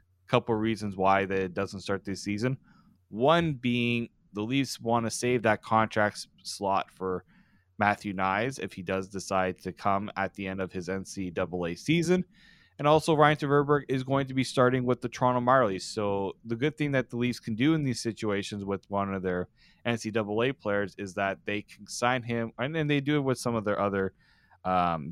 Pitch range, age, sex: 100-125 Hz, 20-39, male